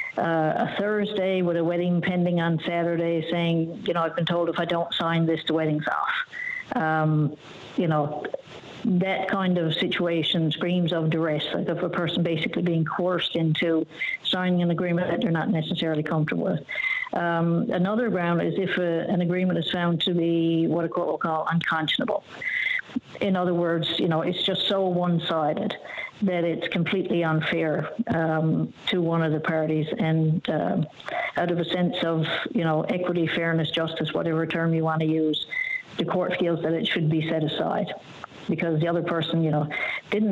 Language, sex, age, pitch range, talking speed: English, female, 60-79, 160-180 Hz, 175 wpm